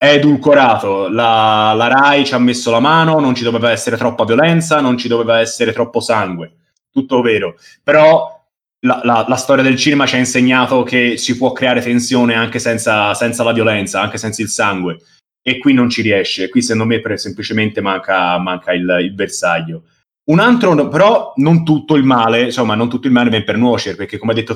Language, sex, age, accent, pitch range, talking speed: Italian, male, 20-39, native, 110-140 Hz, 200 wpm